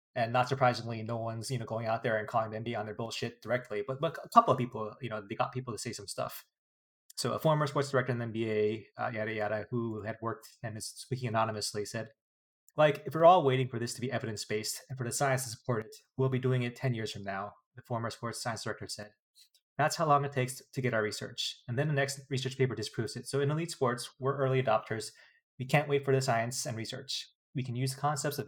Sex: male